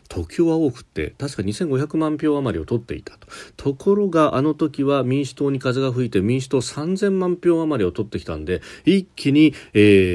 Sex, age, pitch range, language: male, 40-59, 105-150 Hz, Japanese